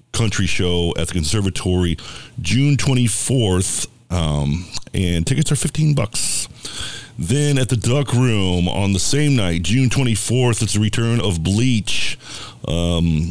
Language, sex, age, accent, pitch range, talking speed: English, male, 50-69, American, 90-120 Hz, 135 wpm